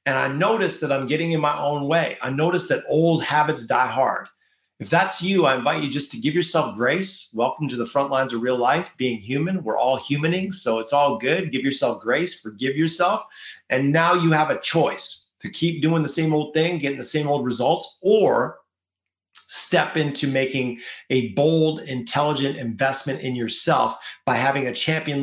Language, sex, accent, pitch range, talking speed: English, male, American, 130-165 Hz, 195 wpm